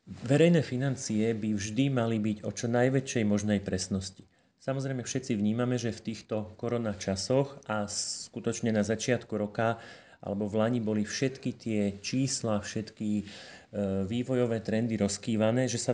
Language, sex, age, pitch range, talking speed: Slovak, male, 30-49, 105-125 Hz, 140 wpm